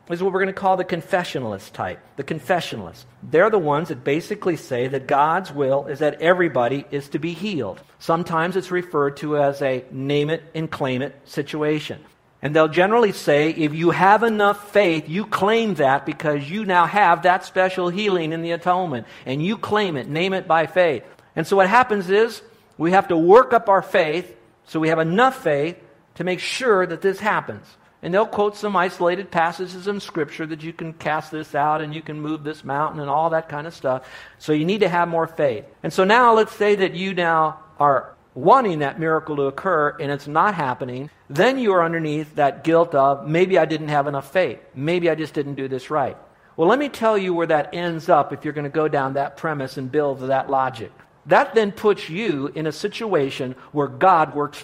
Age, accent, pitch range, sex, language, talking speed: 50-69, American, 145-185 Hz, male, English, 215 wpm